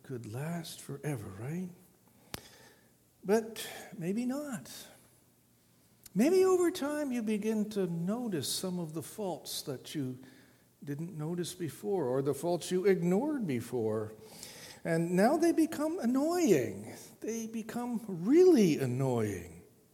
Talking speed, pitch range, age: 110 wpm, 155-230 Hz, 60-79